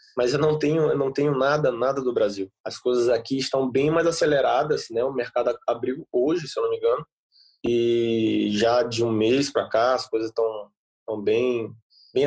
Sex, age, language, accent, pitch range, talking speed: male, 20-39, Portuguese, Brazilian, 130-215 Hz, 200 wpm